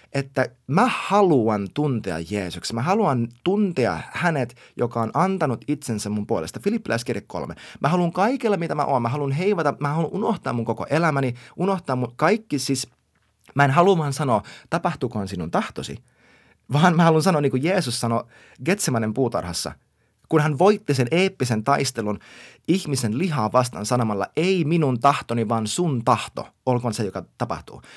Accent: native